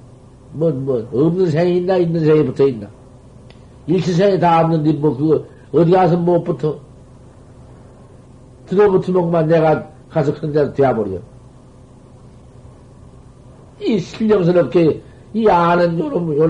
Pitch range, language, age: 130-175 Hz, Korean, 60-79